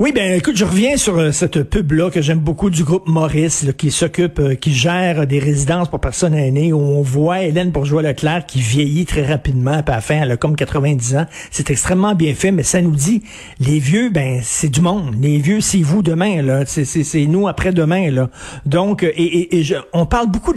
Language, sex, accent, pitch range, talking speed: French, male, Canadian, 145-190 Hz, 230 wpm